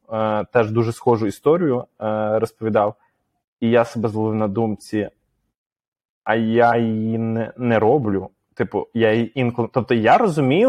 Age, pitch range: 20-39, 110-145 Hz